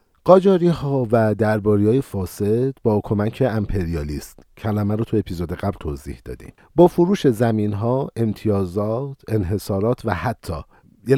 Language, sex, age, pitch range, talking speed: Persian, male, 50-69, 85-115 Hz, 130 wpm